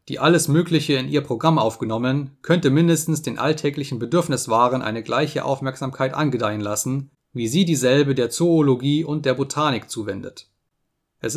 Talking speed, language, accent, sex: 145 wpm, German, German, male